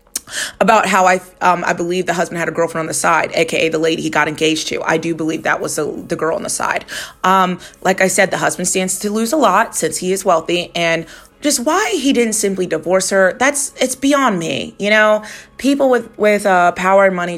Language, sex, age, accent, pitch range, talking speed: English, female, 30-49, American, 180-225 Hz, 230 wpm